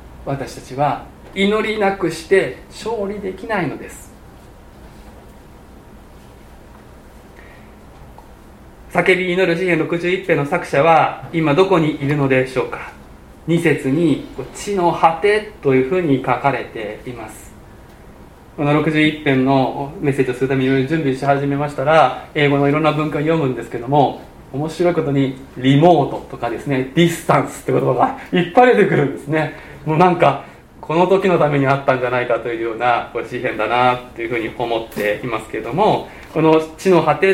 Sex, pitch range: male, 135-185 Hz